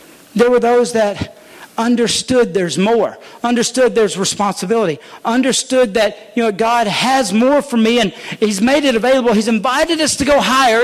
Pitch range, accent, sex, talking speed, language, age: 225-280 Hz, American, male, 190 wpm, English, 50-69